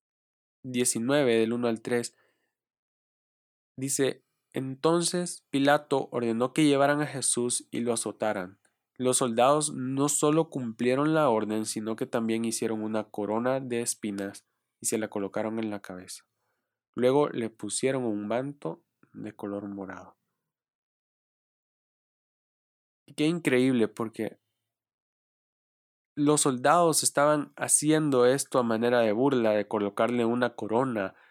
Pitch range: 110-135 Hz